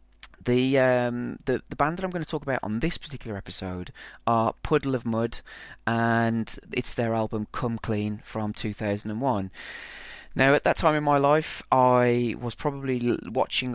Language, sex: English, male